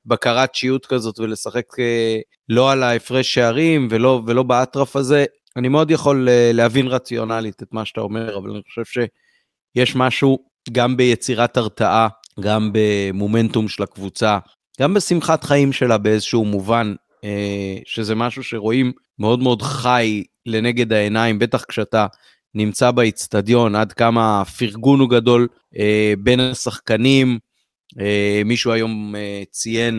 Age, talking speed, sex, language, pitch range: 30-49, 120 wpm, male, Hebrew, 110-130 Hz